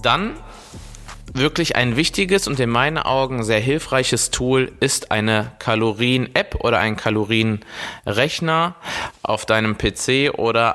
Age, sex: 20-39, male